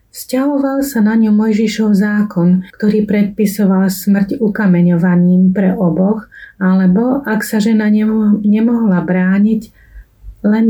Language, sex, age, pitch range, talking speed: Slovak, female, 30-49, 180-220 Hz, 105 wpm